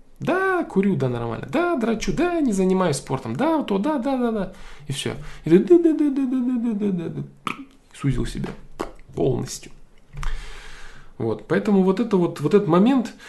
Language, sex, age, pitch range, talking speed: Russian, male, 20-39, 130-175 Hz, 135 wpm